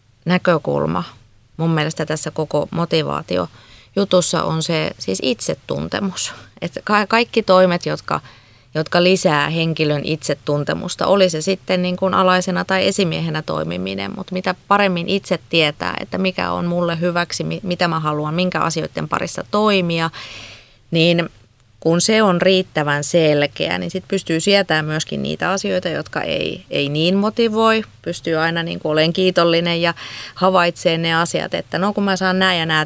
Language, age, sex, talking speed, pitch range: Finnish, 30-49, female, 135 wpm, 150-185 Hz